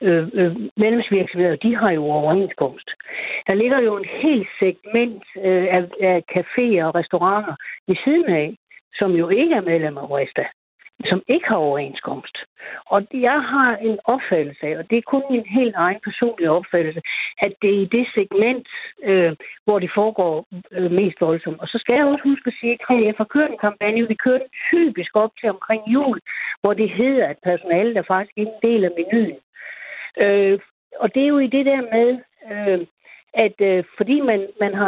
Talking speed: 185 wpm